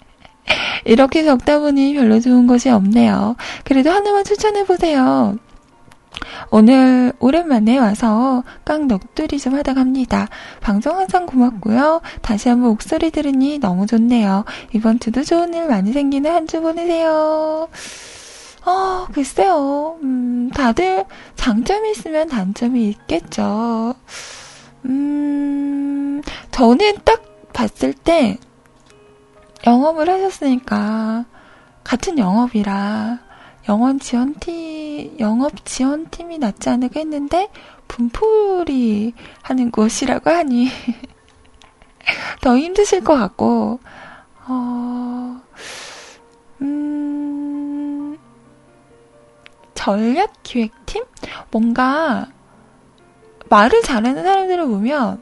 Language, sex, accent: Korean, female, native